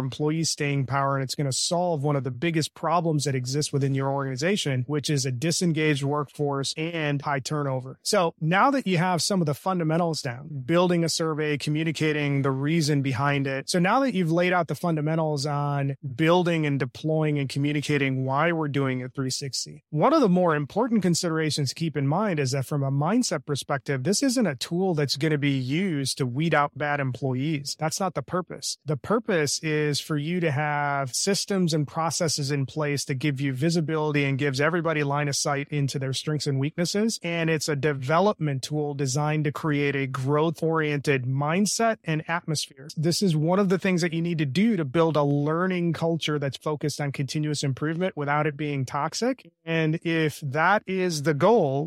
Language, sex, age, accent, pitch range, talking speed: English, male, 30-49, American, 140-165 Hz, 195 wpm